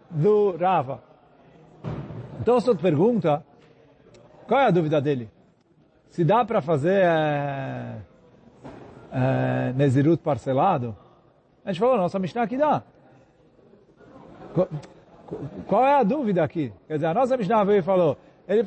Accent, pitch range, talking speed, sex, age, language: Brazilian, 155-230 Hz, 130 wpm, male, 40-59, Portuguese